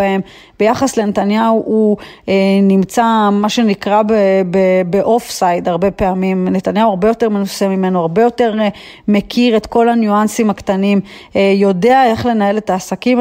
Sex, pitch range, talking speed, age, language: female, 195-225 Hz, 130 wpm, 30-49, Hebrew